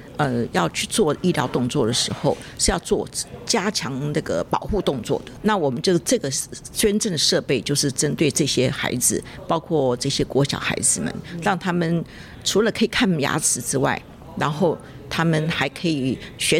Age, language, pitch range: 50-69, Chinese, 140-195 Hz